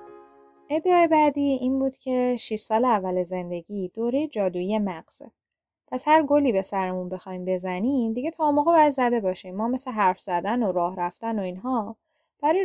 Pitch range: 180-255 Hz